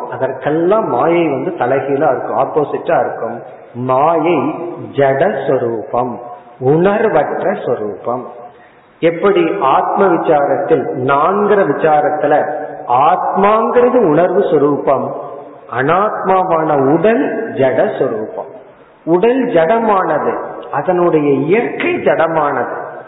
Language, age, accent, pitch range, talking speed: Tamil, 50-69, native, 150-210 Hz, 35 wpm